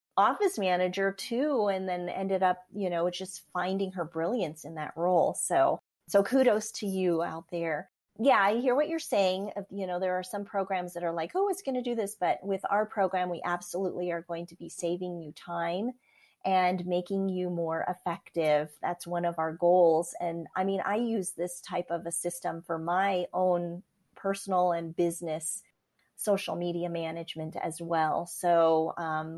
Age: 30-49